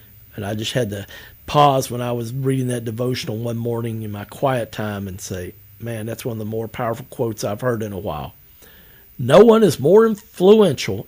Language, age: English, 50-69